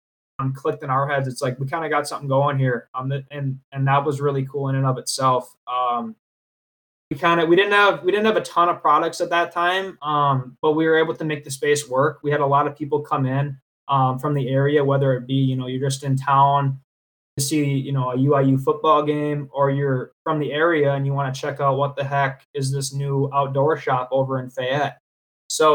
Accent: American